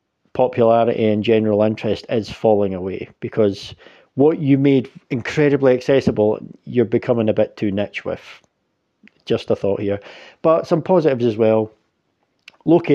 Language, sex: English, male